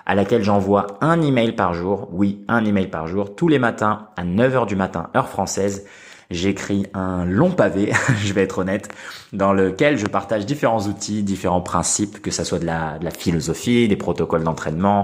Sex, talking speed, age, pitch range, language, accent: male, 190 wpm, 20-39, 95-110 Hz, French, French